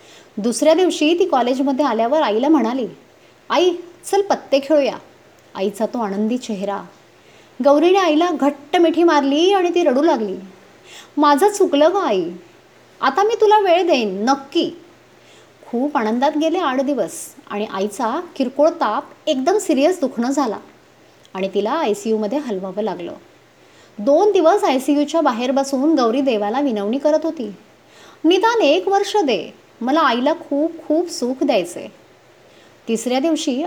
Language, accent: Marathi, native